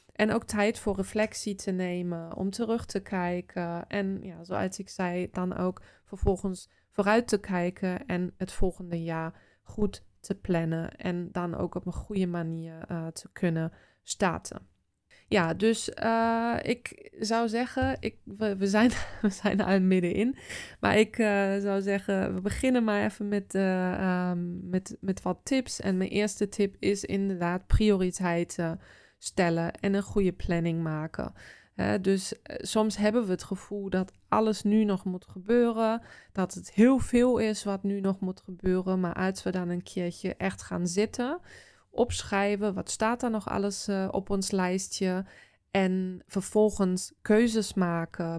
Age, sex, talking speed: 20-39, female, 155 wpm